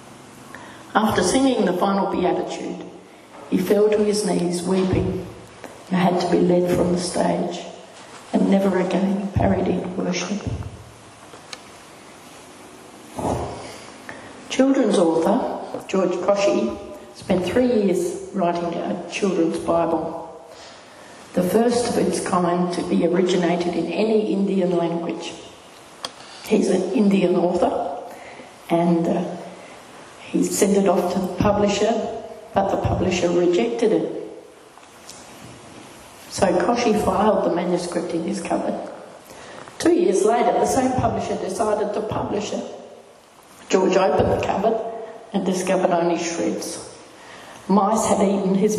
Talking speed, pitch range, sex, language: 120 wpm, 175-220 Hz, female, English